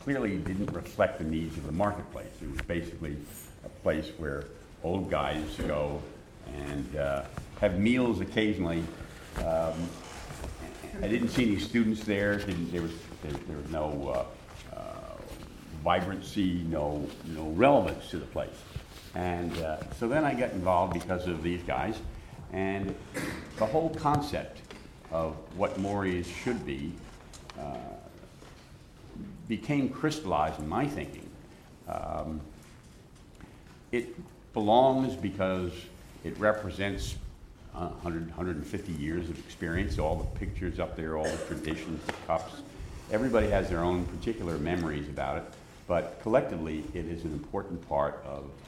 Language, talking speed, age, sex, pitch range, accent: English, 135 wpm, 60-79, male, 80-100 Hz, American